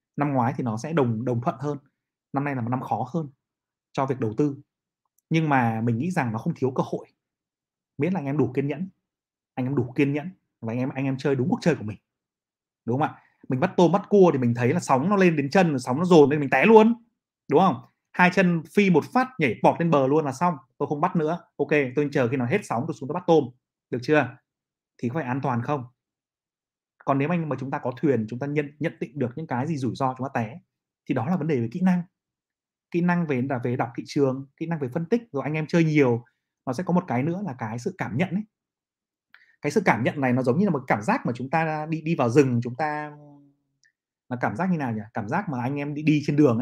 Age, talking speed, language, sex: 30-49, 270 wpm, Vietnamese, male